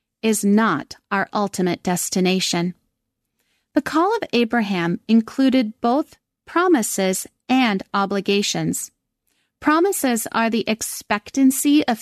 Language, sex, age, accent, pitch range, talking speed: English, female, 30-49, American, 210-270 Hz, 95 wpm